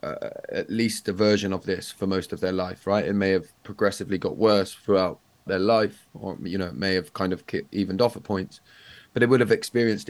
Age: 20-39